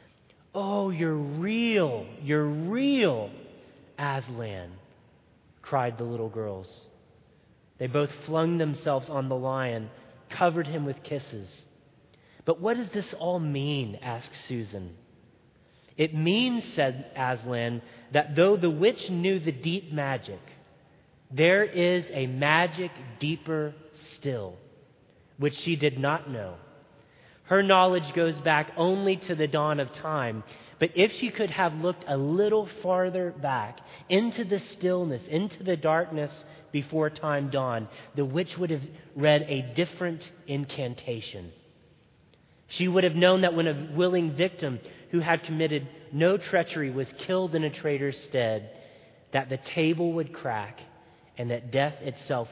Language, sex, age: English, male, 30-49